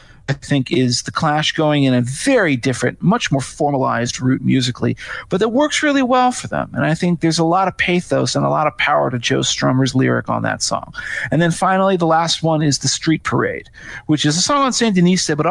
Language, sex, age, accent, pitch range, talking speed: English, male, 40-59, American, 125-160 Hz, 230 wpm